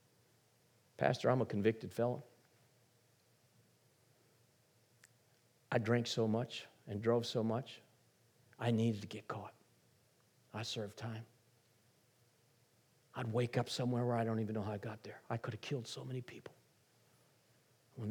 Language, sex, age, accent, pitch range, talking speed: English, male, 50-69, American, 120-160 Hz, 140 wpm